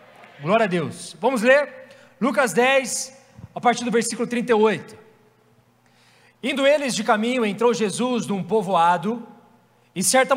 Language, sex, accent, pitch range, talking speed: Portuguese, male, Brazilian, 195-240 Hz, 125 wpm